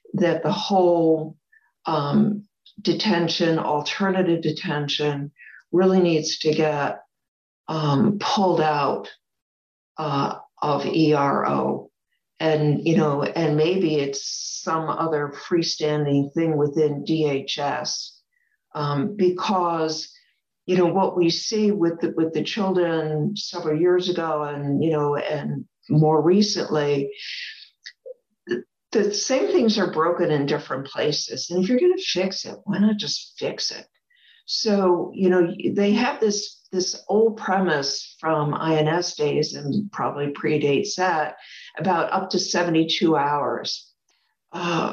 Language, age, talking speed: English, 60-79, 120 wpm